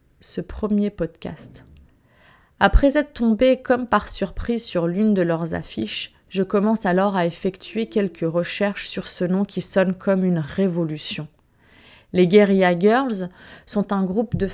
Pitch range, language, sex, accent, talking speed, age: 170-215 Hz, French, female, French, 150 wpm, 20-39